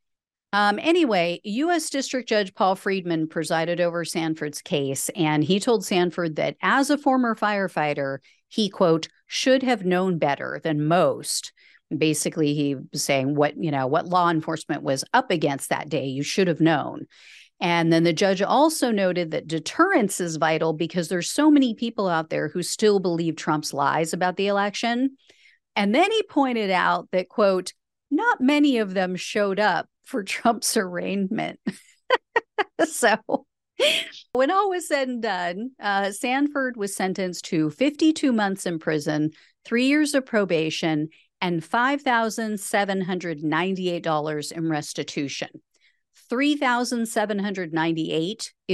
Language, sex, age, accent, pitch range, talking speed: English, female, 50-69, American, 160-225 Hz, 140 wpm